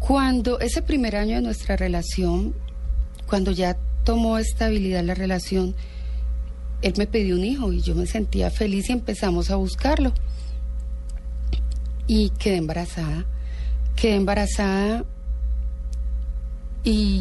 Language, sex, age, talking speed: Spanish, female, 30-49, 115 wpm